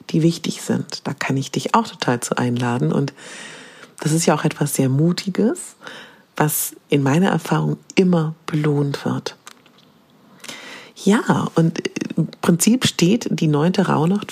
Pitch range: 150-200 Hz